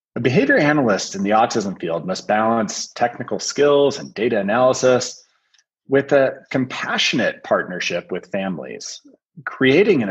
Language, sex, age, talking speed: English, male, 30-49, 130 wpm